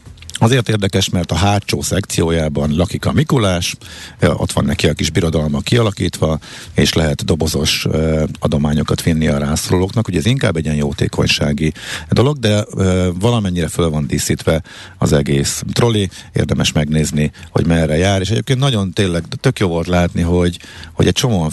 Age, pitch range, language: 50-69, 80-110 Hz, Hungarian